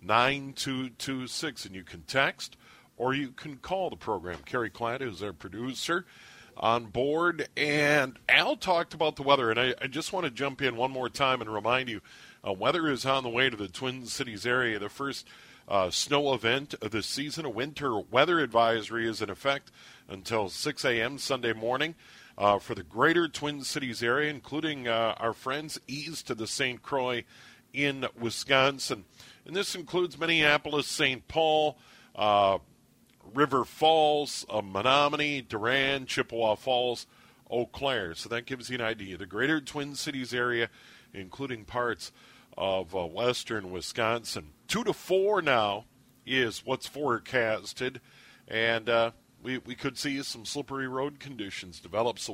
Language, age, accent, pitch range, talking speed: English, 50-69, American, 115-145 Hz, 160 wpm